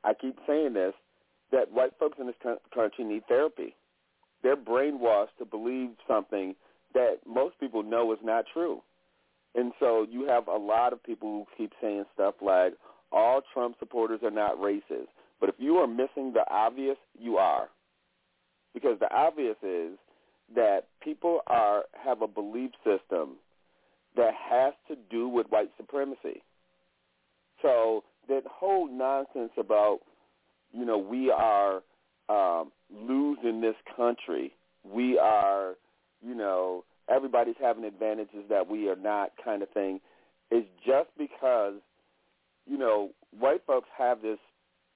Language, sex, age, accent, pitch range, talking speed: English, male, 40-59, American, 105-135 Hz, 140 wpm